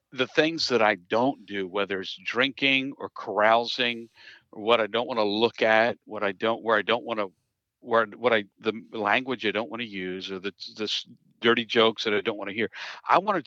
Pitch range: 110-135 Hz